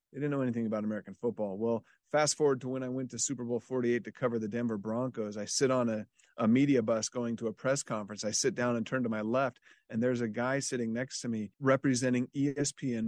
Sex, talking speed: male, 245 wpm